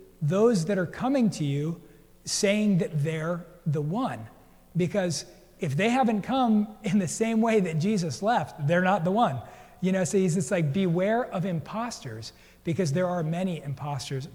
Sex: male